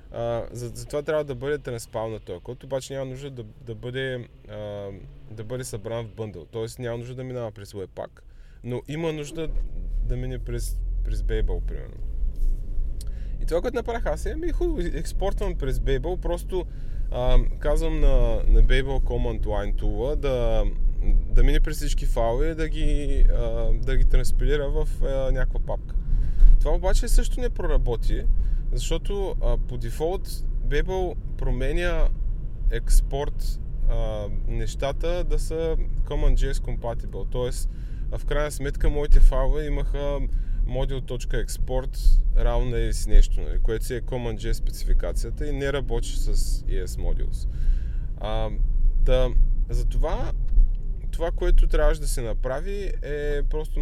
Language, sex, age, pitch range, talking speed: Bulgarian, male, 20-39, 110-140 Hz, 140 wpm